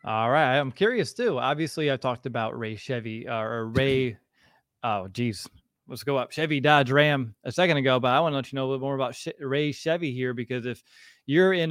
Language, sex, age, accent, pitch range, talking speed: English, male, 20-39, American, 120-140 Hz, 220 wpm